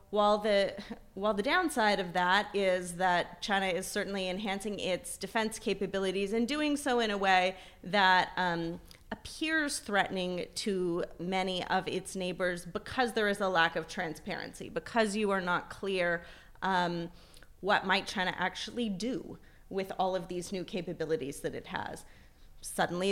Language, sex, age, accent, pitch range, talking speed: English, female, 30-49, American, 185-225 Hz, 150 wpm